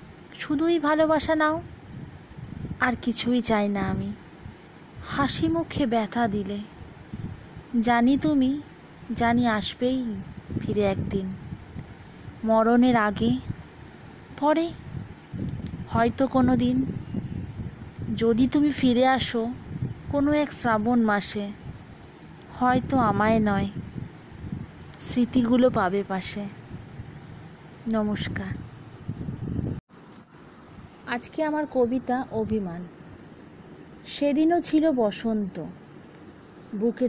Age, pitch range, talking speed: 20-39, 210-275 Hz, 75 wpm